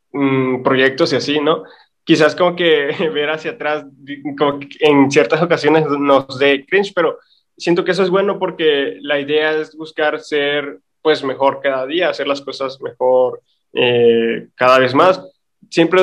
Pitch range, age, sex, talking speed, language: 135-160 Hz, 20-39, male, 160 wpm, Spanish